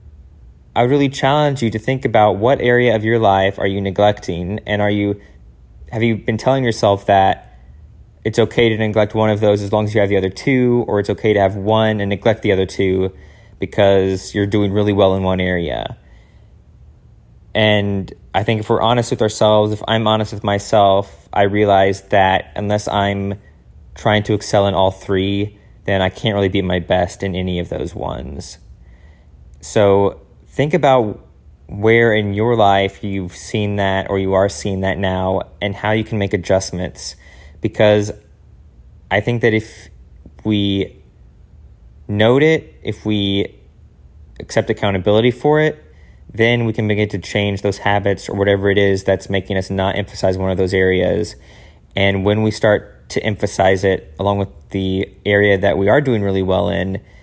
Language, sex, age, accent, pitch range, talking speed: English, male, 20-39, American, 95-105 Hz, 175 wpm